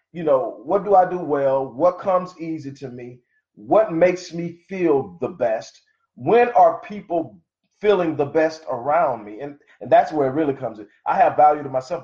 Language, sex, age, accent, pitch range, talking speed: English, male, 40-59, American, 140-190 Hz, 195 wpm